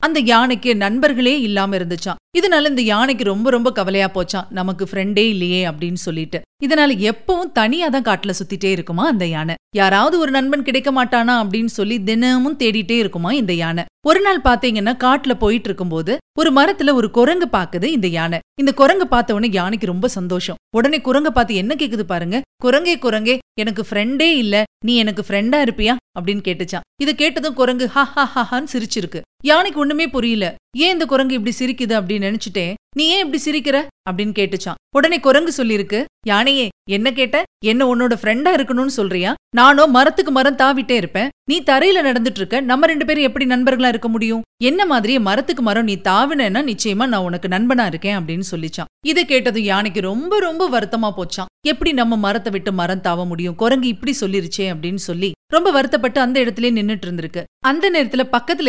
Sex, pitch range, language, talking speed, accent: female, 195-275 Hz, Tamil, 165 wpm, native